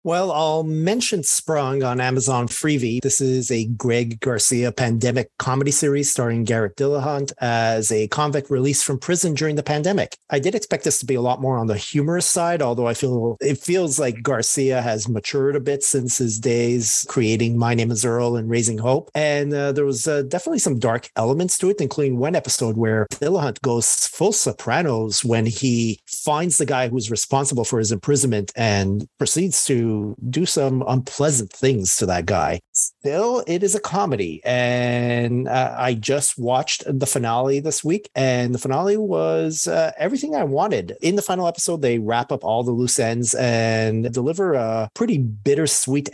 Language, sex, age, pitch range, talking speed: English, male, 40-59, 120-145 Hz, 180 wpm